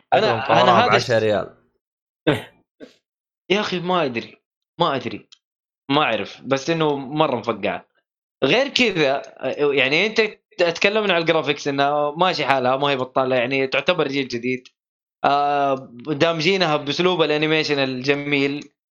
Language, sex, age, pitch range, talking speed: Arabic, male, 20-39, 145-220 Hz, 120 wpm